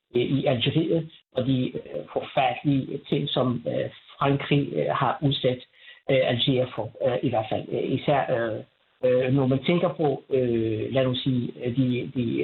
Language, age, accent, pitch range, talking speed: Danish, 60-79, native, 130-165 Hz, 120 wpm